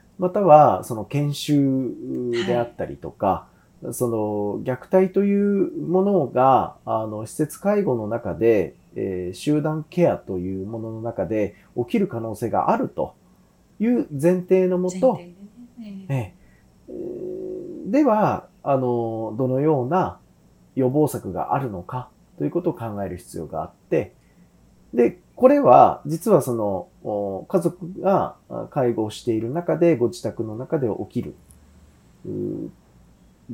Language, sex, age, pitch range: Japanese, male, 30-49, 105-170 Hz